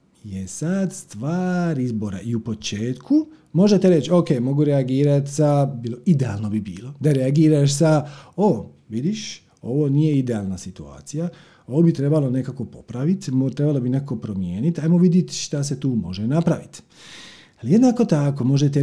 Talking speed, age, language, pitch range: 145 wpm, 40-59, Croatian, 130-180 Hz